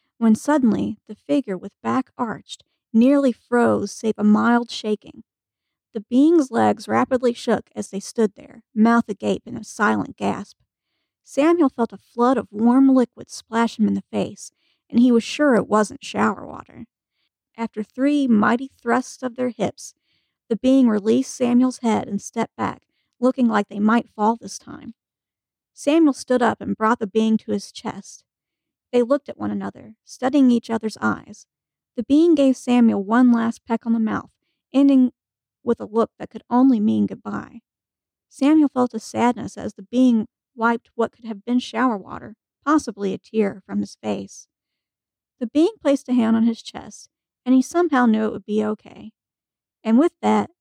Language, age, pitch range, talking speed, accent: English, 40-59, 215-255 Hz, 175 wpm, American